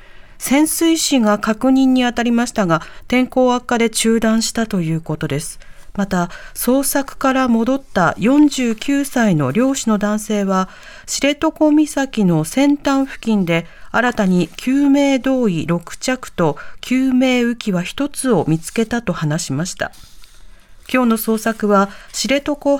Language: Japanese